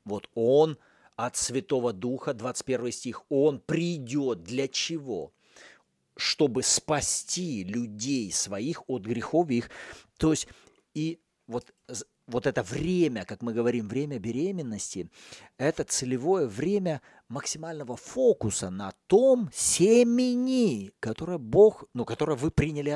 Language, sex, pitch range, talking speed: Russian, male, 115-160 Hz, 115 wpm